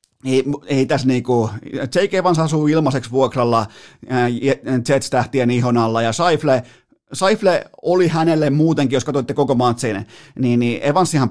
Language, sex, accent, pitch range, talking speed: Finnish, male, native, 120-155 Hz, 135 wpm